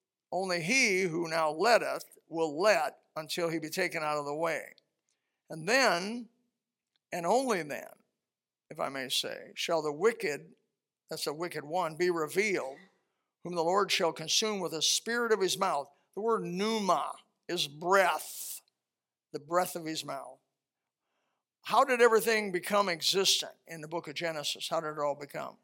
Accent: American